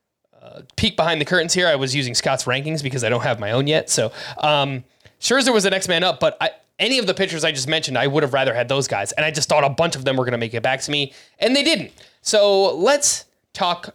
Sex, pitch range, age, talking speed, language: male, 140-200 Hz, 20-39, 275 wpm, English